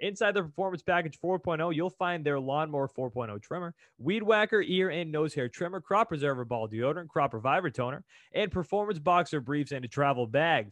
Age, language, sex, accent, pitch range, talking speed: 20-39, English, male, American, 145-185 Hz, 185 wpm